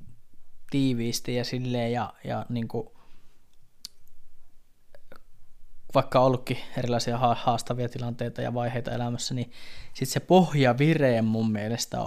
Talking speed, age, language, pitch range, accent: 115 wpm, 20-39, Finnish, 115-130 Hz, native